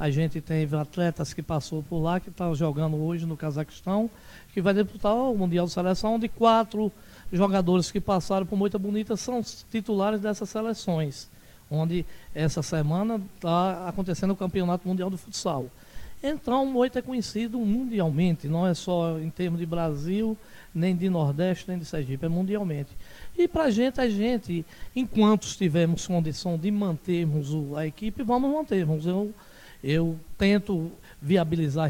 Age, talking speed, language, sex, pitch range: 60-79, 150 wpm, Portuguese, male, 165-205 Hz